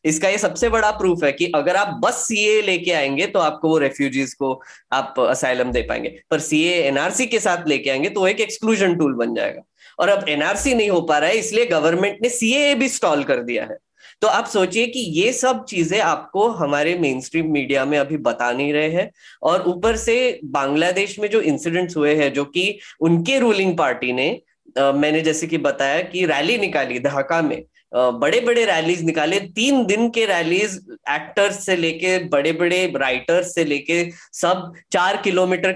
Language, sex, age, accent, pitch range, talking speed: Hindi, female, 20-39, native, 150-190 Hz, 190 wpm